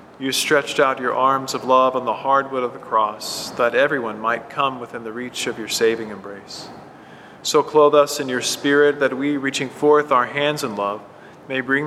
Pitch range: 120-140 Hz